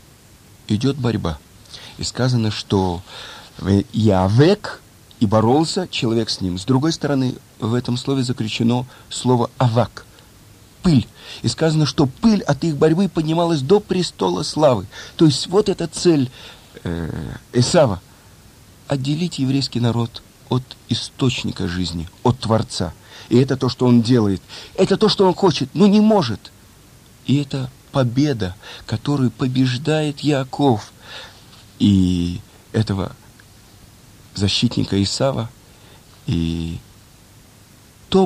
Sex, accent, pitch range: male, native, 105-145 Hz